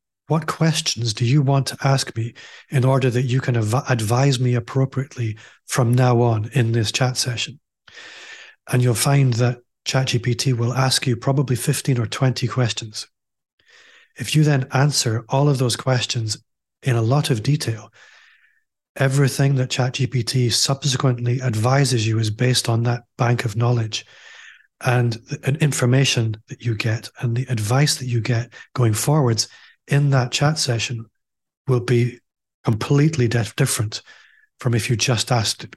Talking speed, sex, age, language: 150 wpm, male, 30-49, English